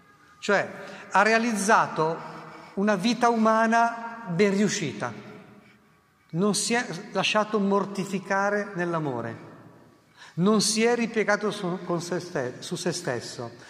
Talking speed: 105 wpm